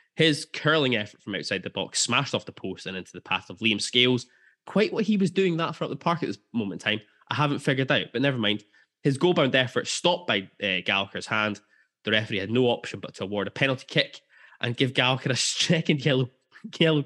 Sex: male